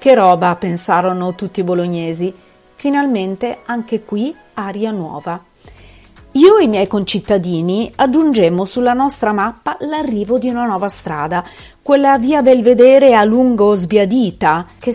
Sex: female